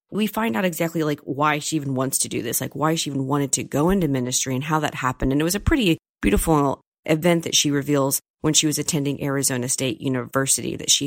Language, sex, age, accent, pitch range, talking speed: English, female, 30-49, American, 140-170 Hz, 240 wpm